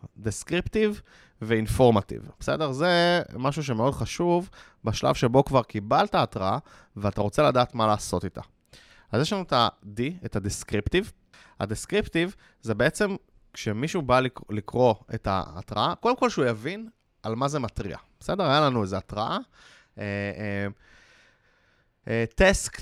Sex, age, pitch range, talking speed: male, 20-39, 105-145 Hz, 125 wpm